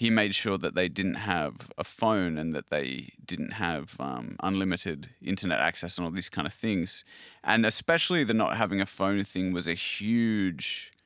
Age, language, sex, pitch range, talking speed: 30-49, English, male, 90-110 Hz, 190 wpm